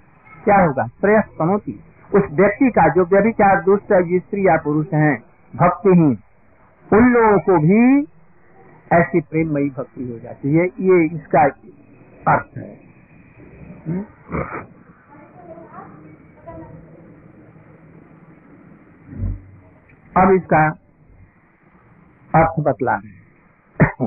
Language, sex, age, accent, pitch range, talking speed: Hindi, male, 60-79, native, 155-205 Hz, 90 wpm